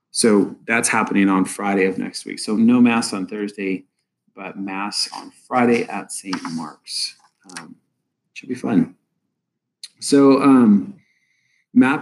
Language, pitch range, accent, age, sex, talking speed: English, 105-140 Hz, American, 30-49, male, 135 wpm